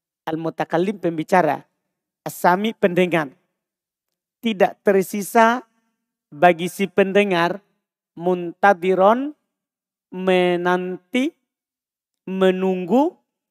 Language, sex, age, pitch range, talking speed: Indonesian, male, 40-59, 175-240 Hz, 55 wpm